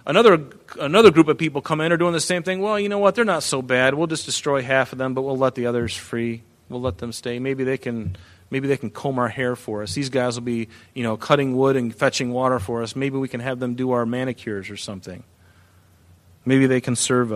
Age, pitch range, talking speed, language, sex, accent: 30-49, 120-150 Hz, 255 wpm, English, male, American